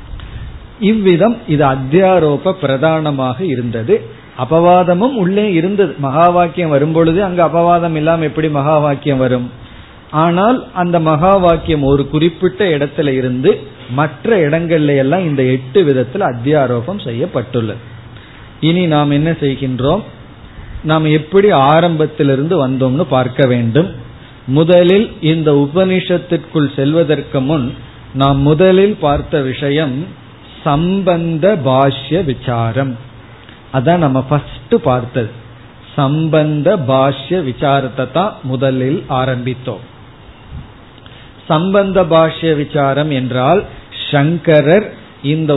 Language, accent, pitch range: Tamil, native, 130-165 Hz